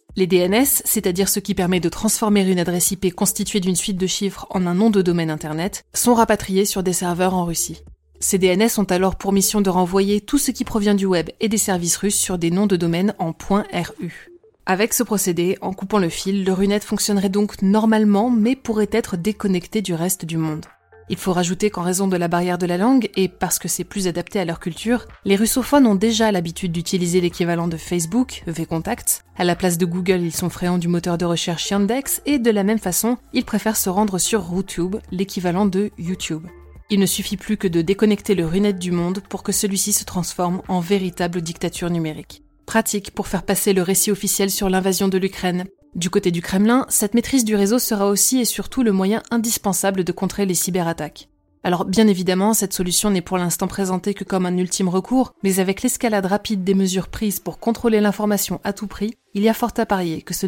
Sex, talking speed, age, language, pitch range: female, 215 wpm, 20-39, French, 180-210 Hz